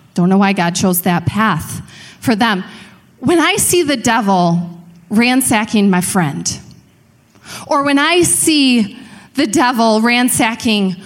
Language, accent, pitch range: English, American, 180-260 Hz